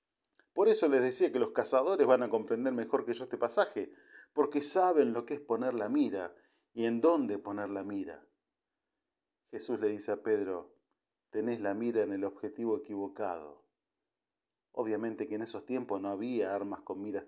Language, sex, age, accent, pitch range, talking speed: Spanish, male, 40-59, Argentinian, 105-145 Hz, 175 wpm